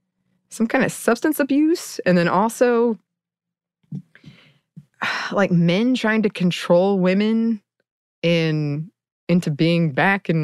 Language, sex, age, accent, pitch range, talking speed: English, female, 20-39, American, 160-225 Hz, 110 wpm